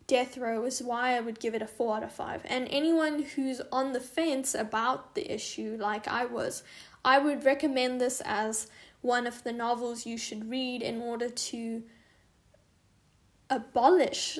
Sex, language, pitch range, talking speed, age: female, English, 230-270 Hz, 170 wpm, 10-29